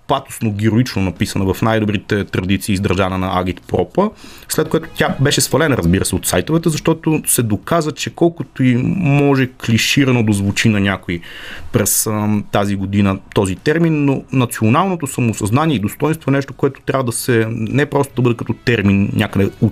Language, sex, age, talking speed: Bulgarian, male, 30-49, 165 wpm